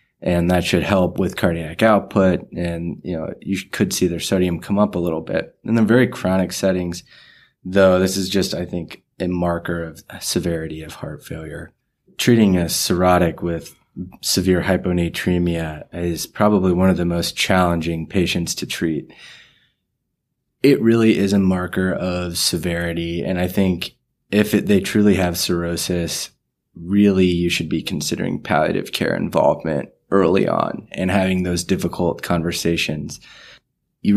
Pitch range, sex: 85-100 Hz, male